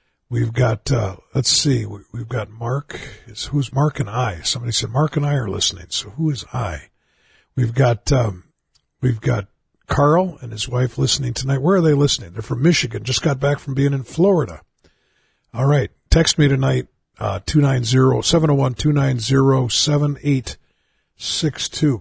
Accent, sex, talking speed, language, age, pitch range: American, male, 160 wpm, English, 50-69, 120-145 Hz